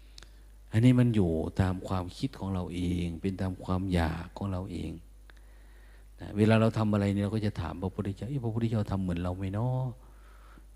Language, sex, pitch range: Thai, male, 85-110 Hz